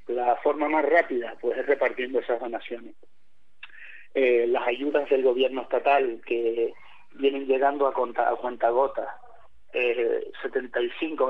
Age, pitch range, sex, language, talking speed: 30-49, 125-175 Hz, male, Spanish, 135 wpm